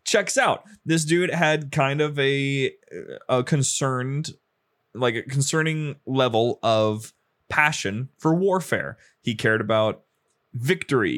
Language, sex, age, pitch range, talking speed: English, male, 20-39, 110-145 Hz, 120 wpm